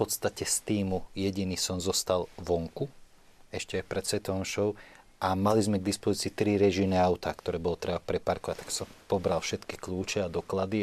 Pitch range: 95-105 Hz